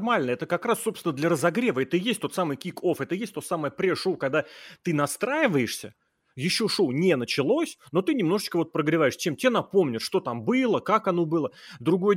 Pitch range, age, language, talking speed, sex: 125-165 Hz, 30-49, Russian, 195 wpm, male